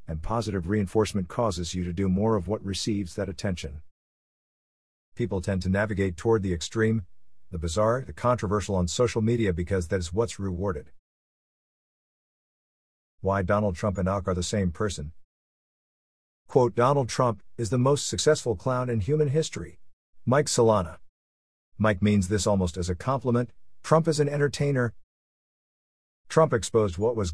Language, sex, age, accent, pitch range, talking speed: English, male, 50-69, American, 90-120 Hz, 150 wpm